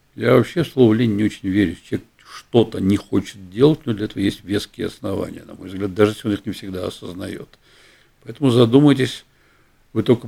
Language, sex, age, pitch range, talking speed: Russian, male, 60-79, 100-130 Hz, 185 wpm